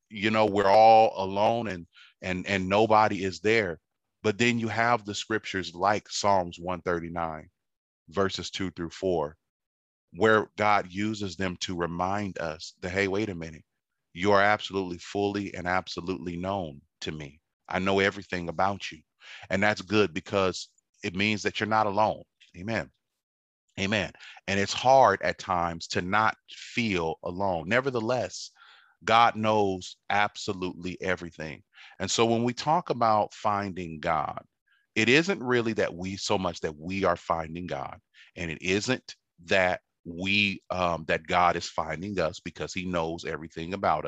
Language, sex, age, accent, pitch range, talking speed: English, male, 30-49, American, 85-105 Hz, 150 wpm